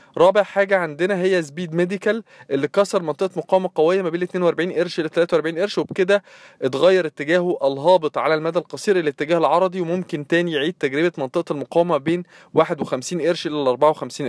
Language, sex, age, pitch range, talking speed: Arabic, male, 20-39, 155-190 Hz, 165 wpm